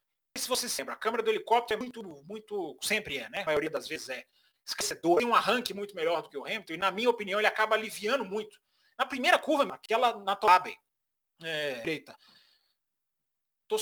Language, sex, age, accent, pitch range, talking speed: Portuguese, male, 40-59, Brazilian, 195-270 Hz, 200 wpm